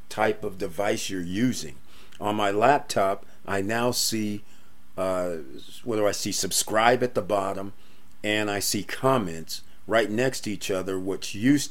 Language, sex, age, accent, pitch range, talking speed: English, male, 40-59, American, 95-120 Hz, 155 wpm